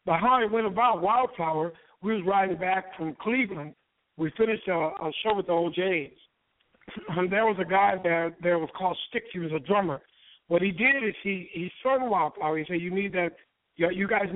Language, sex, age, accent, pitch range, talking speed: English, male, 60-79, American, 170-210 Hz, 210 wpm